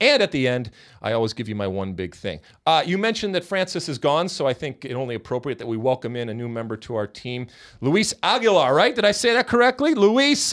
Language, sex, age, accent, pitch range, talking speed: English, male, 40-59, American, 100-145 Hz, 250 wpm